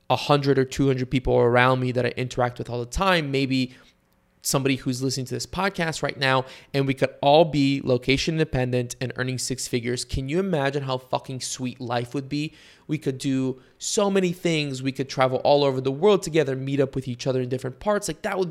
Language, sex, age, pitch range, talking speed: English, male, 20-39, 130-165 Hz, 215 wpm